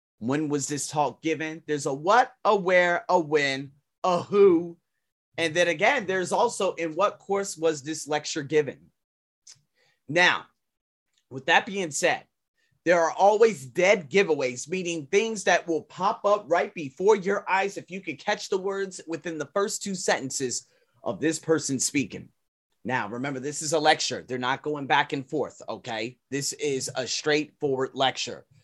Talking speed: 165 wpm